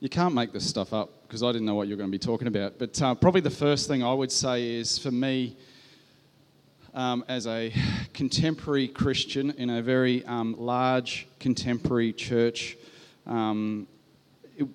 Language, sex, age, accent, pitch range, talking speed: English, male, 40-59, Australian, 115-140 Hz, 180 wpm